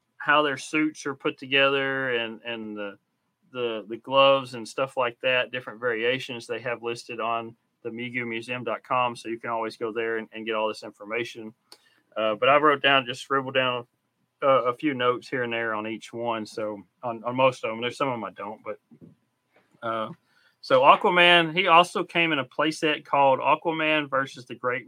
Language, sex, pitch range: English, male, 115-140 Hz